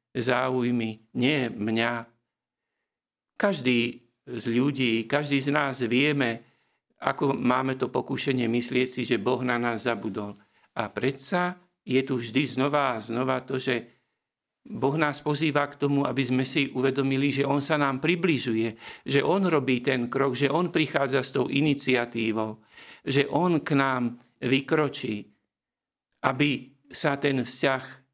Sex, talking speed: male, 140 wpm